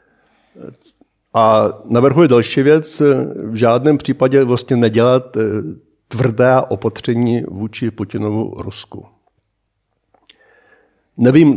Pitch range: 105-125 Hz